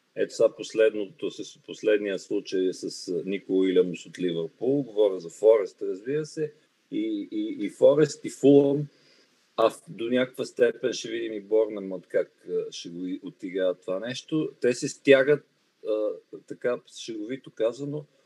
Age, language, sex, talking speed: 40-59, Bulgarian, male, 145 wpm